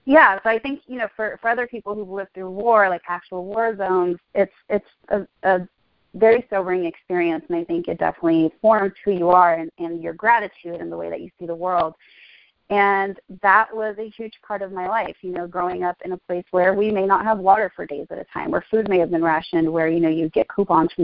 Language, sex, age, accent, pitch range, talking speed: English, female, 30-49, American, 170-205 Hz, 245 wpm